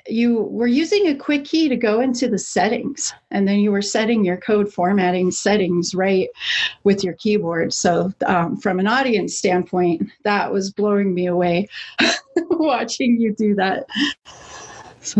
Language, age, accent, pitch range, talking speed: English, 30-49, American, 190-245 Hz, 160 wpm